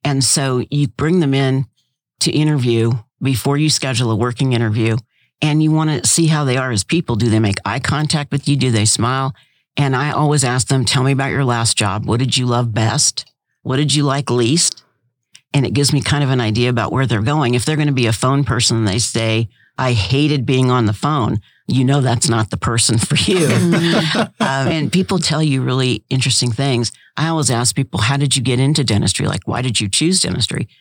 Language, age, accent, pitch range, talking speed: English, 50-69, American, 115-140 Hz, 225 wpm